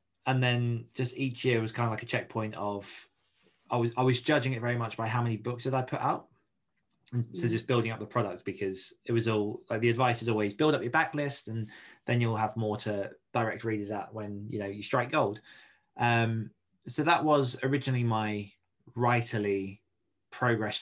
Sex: male